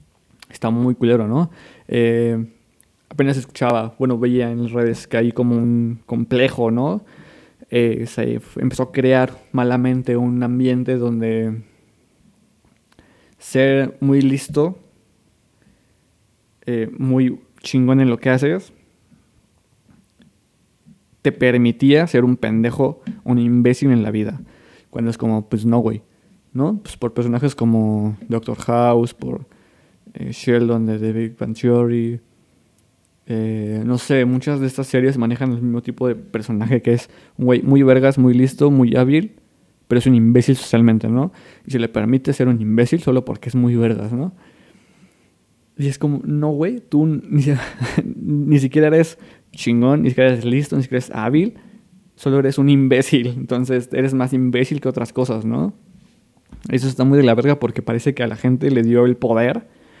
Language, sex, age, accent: Spanish, male, 20-39, Mexican